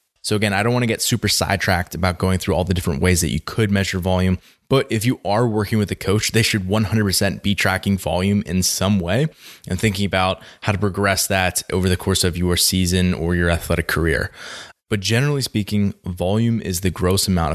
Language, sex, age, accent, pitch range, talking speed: English, male, 20-39, American, 85-100 Hz, 215 wpm